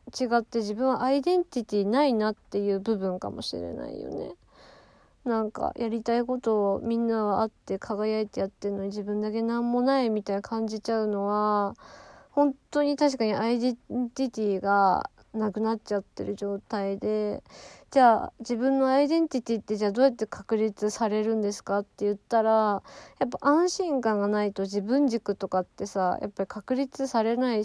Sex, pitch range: female, 205-265 Hz